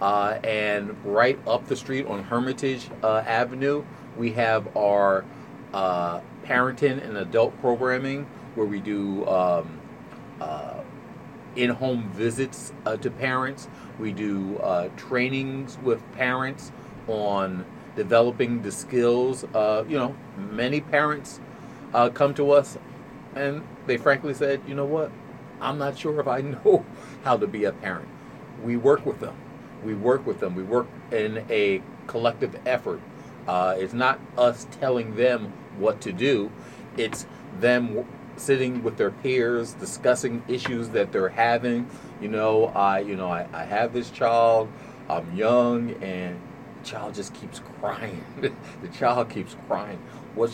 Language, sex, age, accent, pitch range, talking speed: English, male, 40-59, American, 105-130 Hz, 145 wpm